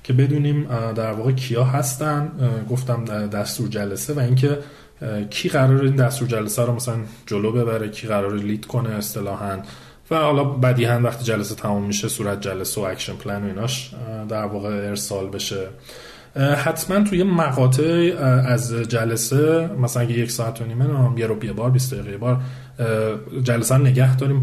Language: Persian